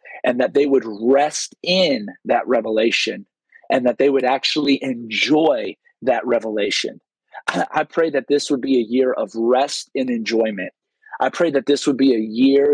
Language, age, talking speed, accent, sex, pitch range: English, 30-49, 175 wpm, American, male, 125-150 Hz